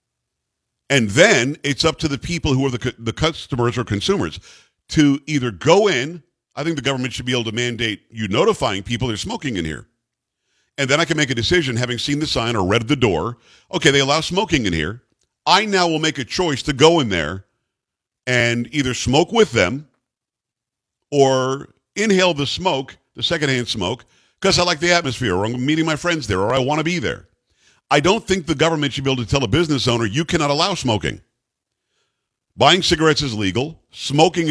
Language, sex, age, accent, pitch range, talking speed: English, male, 50-69, American, 120-160 Hz, 205 wpm